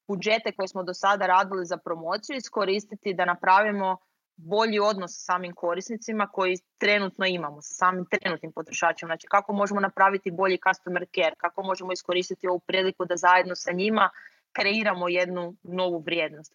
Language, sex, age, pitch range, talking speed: Croatian, female, 30-49, 180-215 Hz, 155 wpm